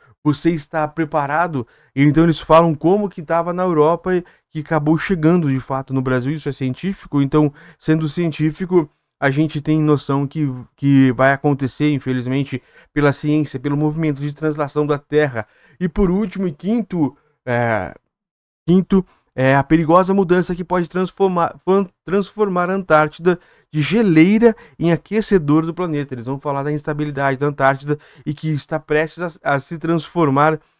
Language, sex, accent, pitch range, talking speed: Portuguese, male, Brazilian, 135-165 Hz, 150 wpm